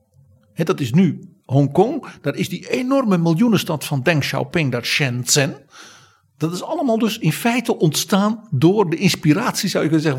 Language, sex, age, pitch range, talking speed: Dutch, male, 50-69, 130-180 Hz, 175 wpm